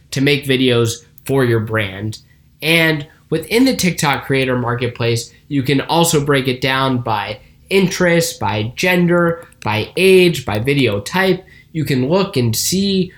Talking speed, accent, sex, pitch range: 145 wpm, American, male, 125-170 Hz